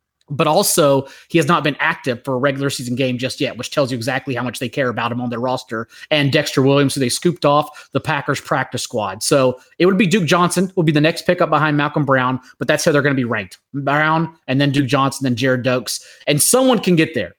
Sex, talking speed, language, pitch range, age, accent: male, 250 wpm, English, 135-165 Hz, 30-49, American